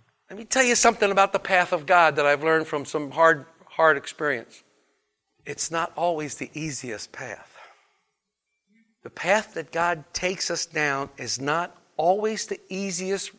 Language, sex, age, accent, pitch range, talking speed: English, male, 60-79, American, 160-235 Hz, 160 wpm